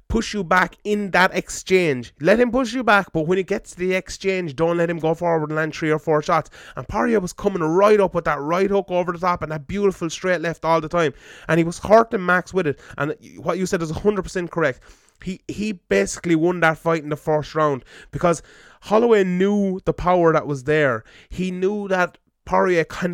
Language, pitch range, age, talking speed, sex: English, 155-185 Hz, 20-39, 230 wpm, male